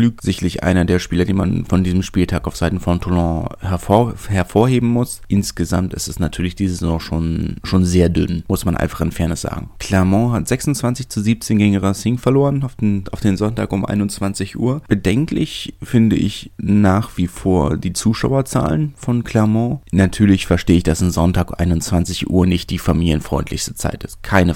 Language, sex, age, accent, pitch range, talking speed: German, male, 30-49, German, 85-100 Hz, 170 wpm